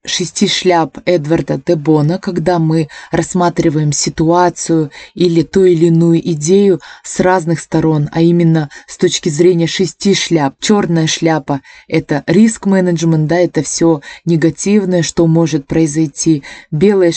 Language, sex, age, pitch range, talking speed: Russian, female, 20-39, 160-185 Hz, 125 wpm